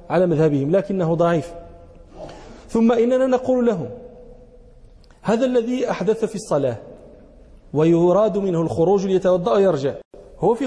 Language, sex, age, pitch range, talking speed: English, male, 40-59, 170-250 Hz, 110 wpm